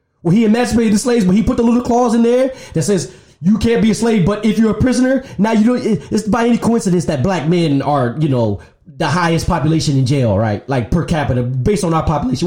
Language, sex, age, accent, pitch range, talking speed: English, male, 20-39, American, 150-235 Hz, 245 wpm